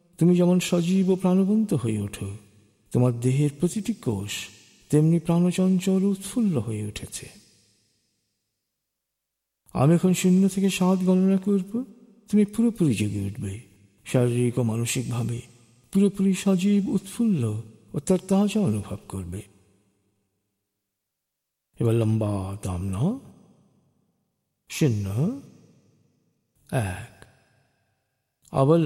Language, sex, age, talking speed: Bengali, male, 50-69, 90 wpm